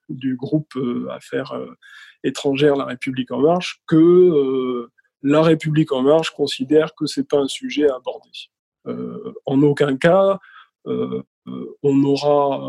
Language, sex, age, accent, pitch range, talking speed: French, male, 20-39, French, 135-170 Hz, 125 wpm